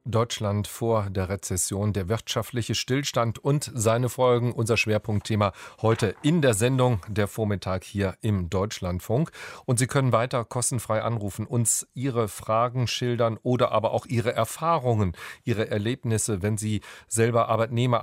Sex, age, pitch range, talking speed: male, 40-59, 100-125 Hz, 140 wpm